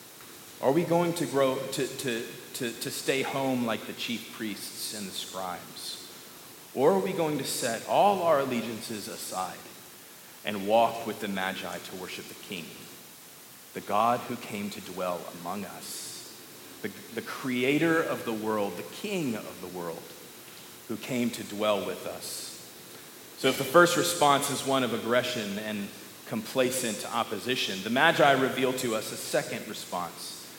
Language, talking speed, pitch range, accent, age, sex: English, 160 wpm, 115-145 Hz, American, 40-59, male